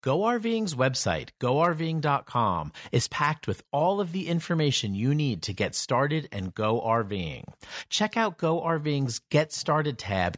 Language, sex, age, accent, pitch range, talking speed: English, male, 40-59, American, 110-155 Hz, 140 wpm